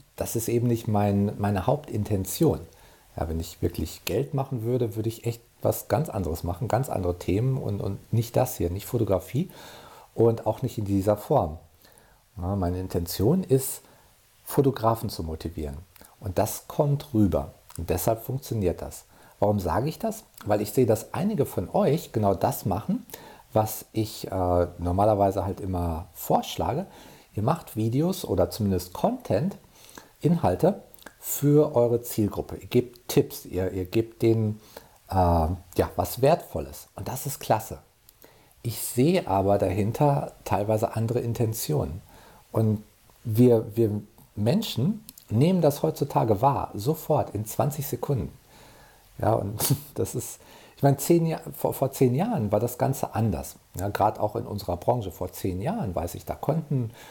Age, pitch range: 50-69, 95-130 Hz